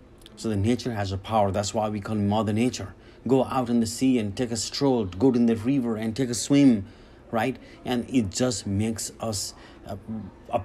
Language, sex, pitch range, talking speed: English, male, 110-125 Hz, 210 wpm